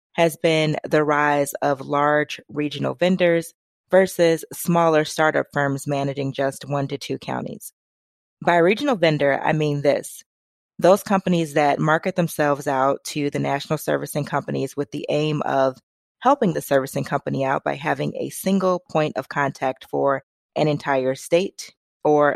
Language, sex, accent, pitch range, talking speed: English, female, American, 140-160 Hz, 150 wpm